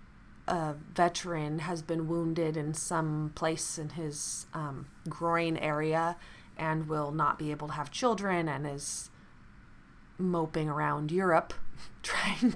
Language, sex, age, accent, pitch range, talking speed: English, female, 20-39, American, 155-210 Hz, 130 wpm